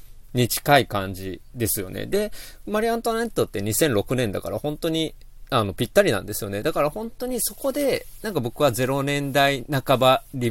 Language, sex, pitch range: Japanese, male, 110-180 Hz